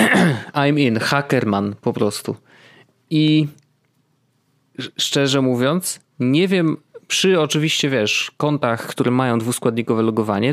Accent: native